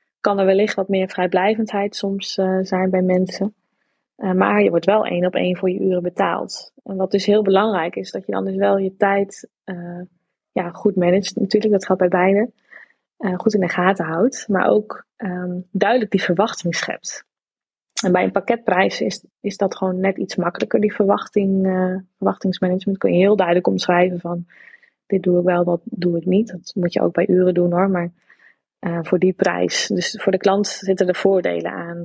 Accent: Dutch